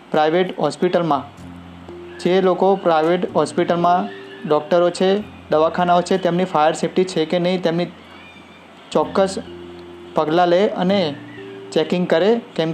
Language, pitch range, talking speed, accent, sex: Gujarati, 150-180 Hz, 105 wpm, native, male